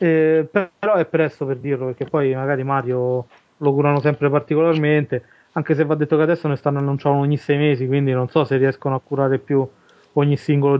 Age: 20-39